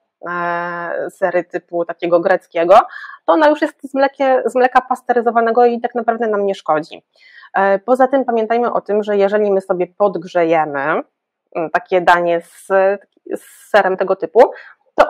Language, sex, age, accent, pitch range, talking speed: Polish, female, 20-39, native, 175-225 Hz, 145 wpm